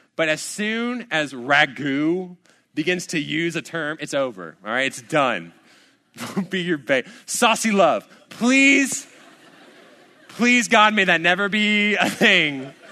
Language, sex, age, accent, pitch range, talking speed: English, male, 20-39, American, 165-255 Hz, 140 wpm